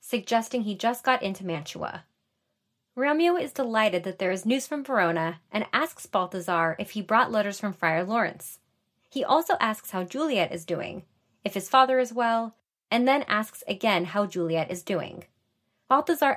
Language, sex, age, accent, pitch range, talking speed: English, female, 30-49, American, 180-255 Hz, 170 wpm